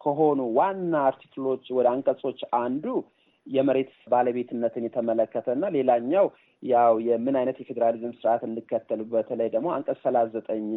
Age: 30-49